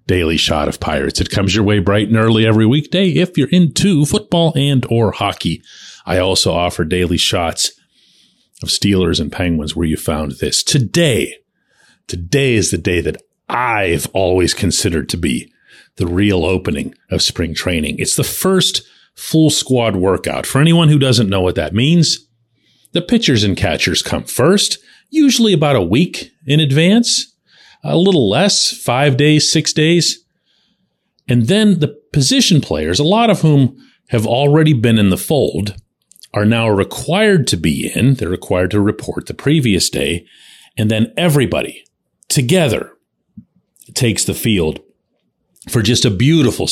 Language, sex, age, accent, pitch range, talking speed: English, male, 40-59, American, 95-155 Hz, 155 wpm